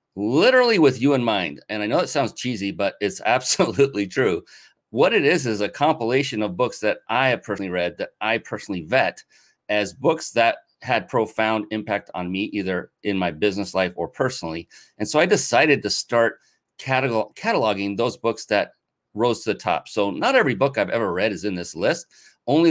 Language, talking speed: English, 195 wpm